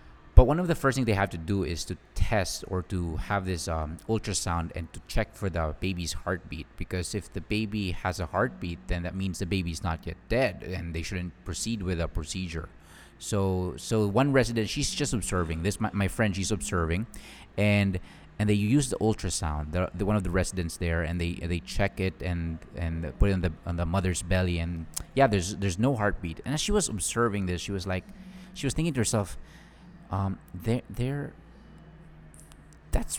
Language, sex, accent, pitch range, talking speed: English, male, Filipino, 90-115 Hz, 205 wpm